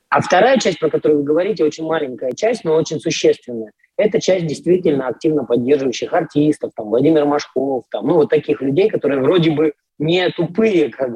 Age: 20-39